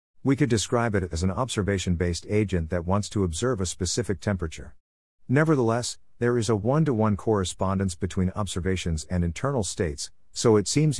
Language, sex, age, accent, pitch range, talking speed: English, male, 50-69, American, 90-115 Hz, 160 wpm